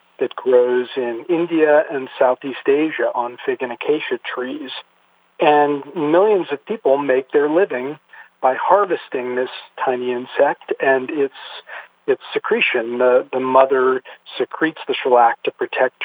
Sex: male